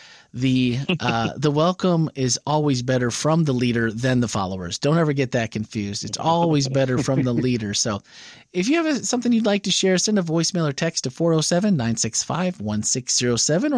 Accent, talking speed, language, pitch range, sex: American, 175 wpm, English, 135-205 Hz, male